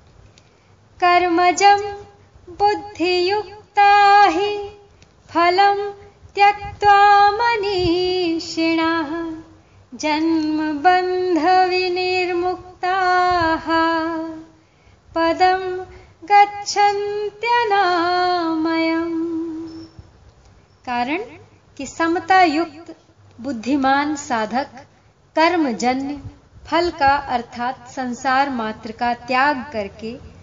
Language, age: Hindi, 30-49